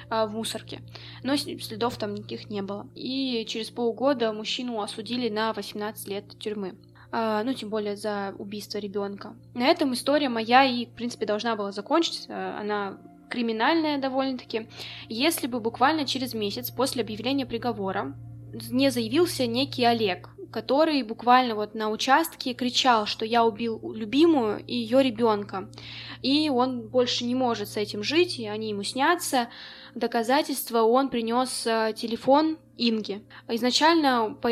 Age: 20-39